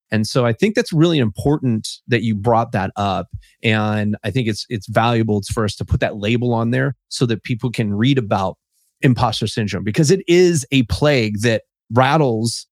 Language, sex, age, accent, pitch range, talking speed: English, male, 30-49, American, 115-155 Hz, 195 wpm